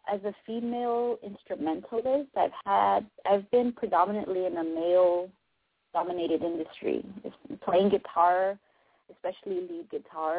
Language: English